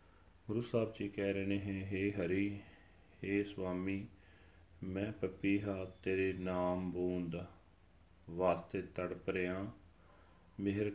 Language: Punjabi